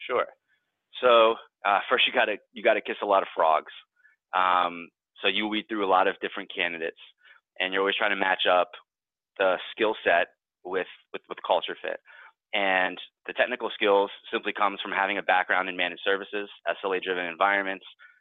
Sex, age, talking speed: male, 30-49, 175 wpm